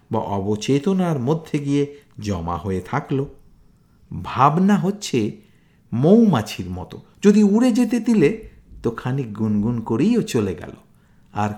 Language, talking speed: Bengali, 120 wpm